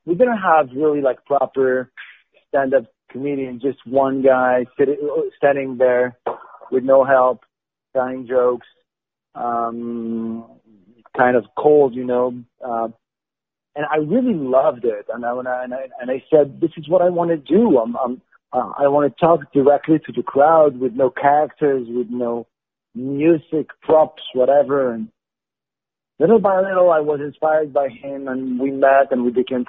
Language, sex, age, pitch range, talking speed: English, male, 40-59, 125-155 Hz, 160 wpm